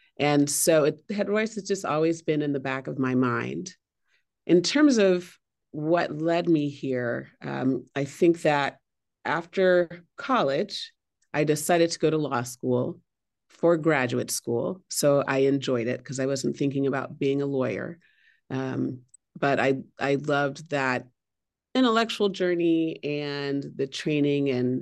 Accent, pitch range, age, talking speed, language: American, 130-160 Hz, 40-59, 145 wpm, English